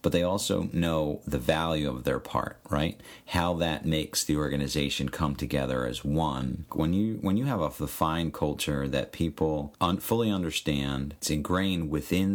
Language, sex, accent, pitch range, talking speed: English, male, American, 70-90 Hz, 170 wpm